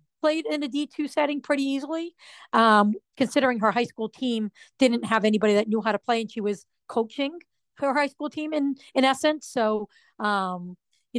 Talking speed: 190 wpm